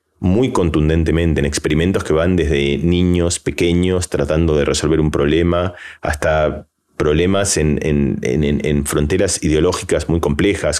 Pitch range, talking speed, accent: 75-90 Hz, 130 wpm, Argentinian